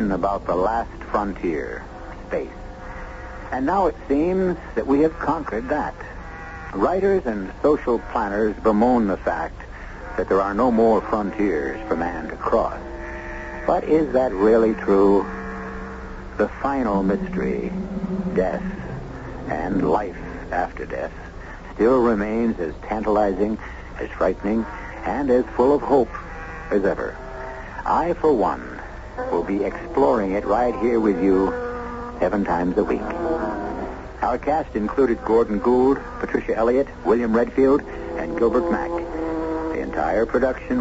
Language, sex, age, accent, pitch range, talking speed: English, male, 60-79, American, 95-145 Hz, 130 wpm